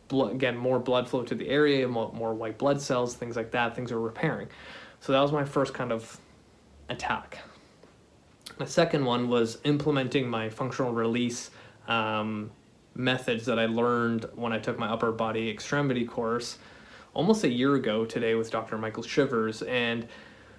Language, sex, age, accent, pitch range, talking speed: English, male, 30-49, American, 115-130 Hz, 170 wpm